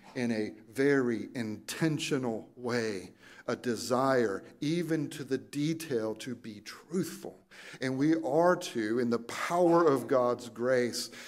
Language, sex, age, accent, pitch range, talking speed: English, male, 50-69, American, 110-140 Hz, 130 wpm